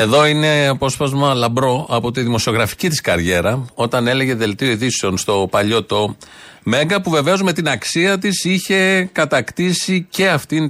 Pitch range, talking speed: 105-145 Hz, 150 wpm